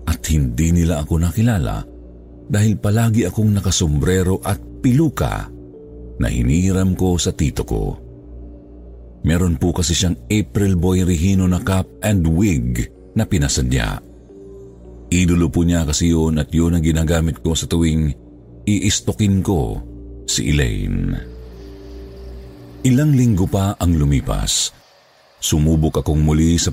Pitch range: 80-100 Hz